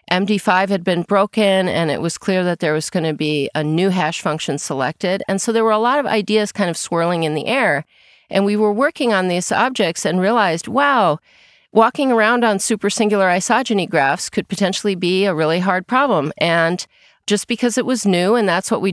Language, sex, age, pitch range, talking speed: English, female, 40-59, 160-210 Hz, 210 wpm